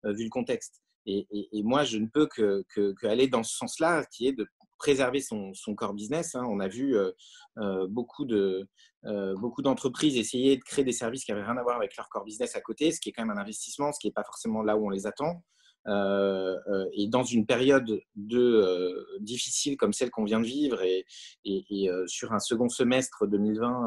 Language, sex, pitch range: French, male, 105-140 Hz